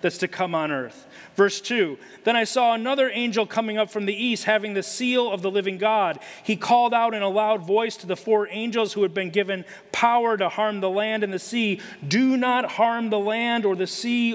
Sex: male